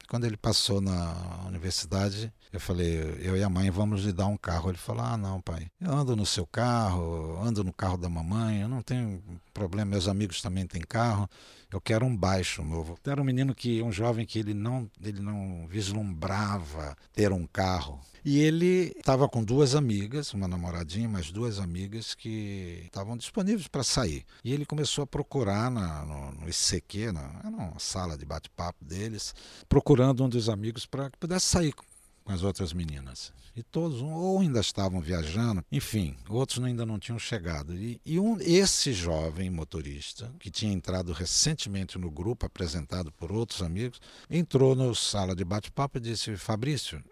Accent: Brazilian